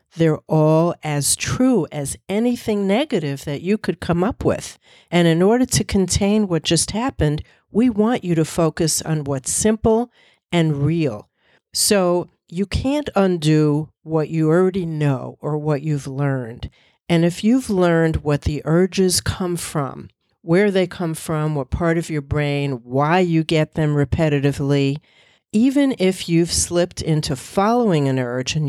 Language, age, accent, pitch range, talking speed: English, 50-69, American, 150-190 Hz, 155 wpm